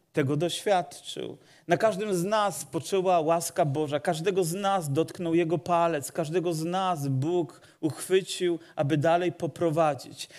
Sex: male